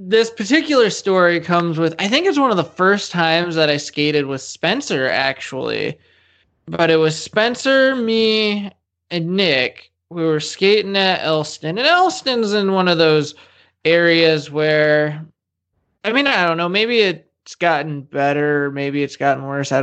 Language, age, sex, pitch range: English, 20-39, male, 145-185 Hz